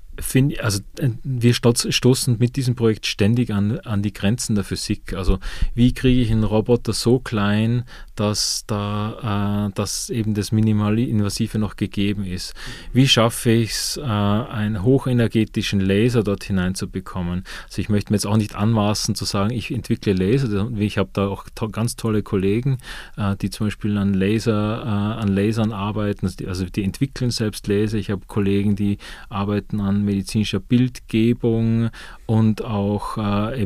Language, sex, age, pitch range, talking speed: German, male, 30-49, 100-120 Hz, 165 wpm